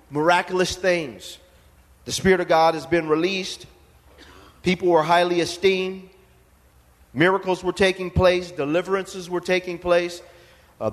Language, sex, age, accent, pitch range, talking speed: English, male, 40-59, American, 165-215 Hz, 120 wpm